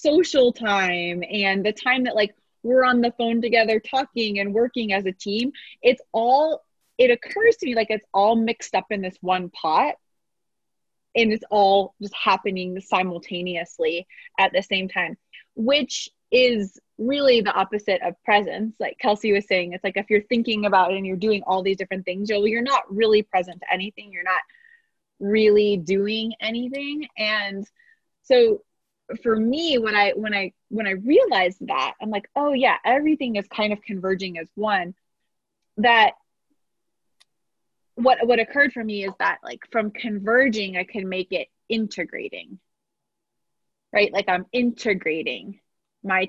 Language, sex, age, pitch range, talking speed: English, female, 20-39, 190-240 Hz, 160 wpm